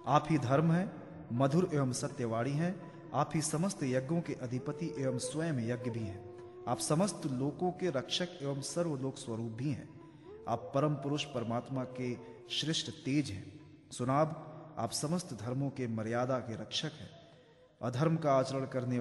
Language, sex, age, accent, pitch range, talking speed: Hindi, male, 30-49, native, 120-160 Hz, 160 wpm